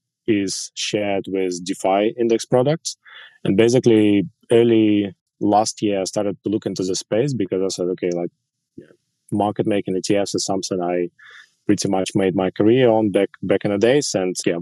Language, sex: English, male